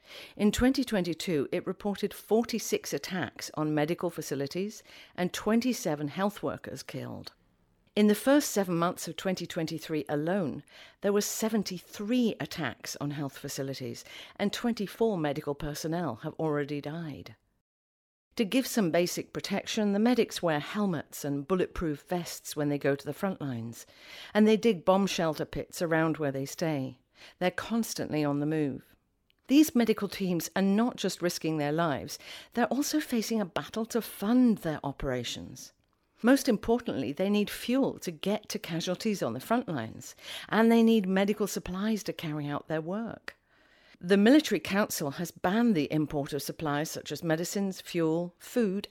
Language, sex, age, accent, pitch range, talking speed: English, female, 50-69, British, 150-215 Hz, 155 wpm